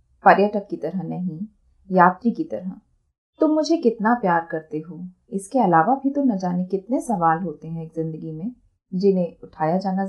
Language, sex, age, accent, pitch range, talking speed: Hindi, female, 30-49, native, 170-220 Hz, 175 wpm